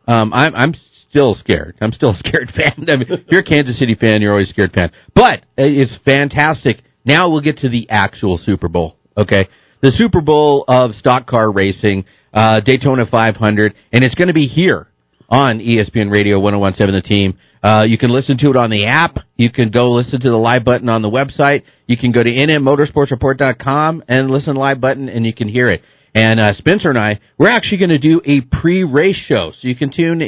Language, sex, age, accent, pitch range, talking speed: English, male, 40-59, American, 110-145 Hz, 220 wpm